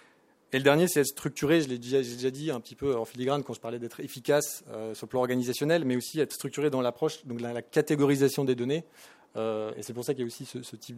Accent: French